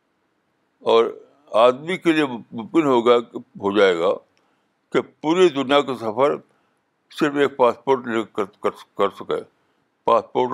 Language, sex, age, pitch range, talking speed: Urdu, male, 60-79, 115-155 Hz, 120 wpm